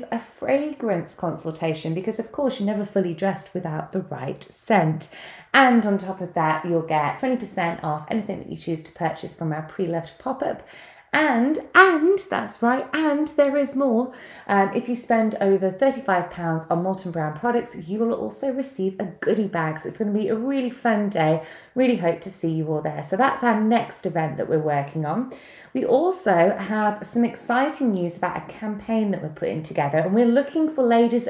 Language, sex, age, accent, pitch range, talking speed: English, female, 30-49, British, 160-230 Hz, 200 wpm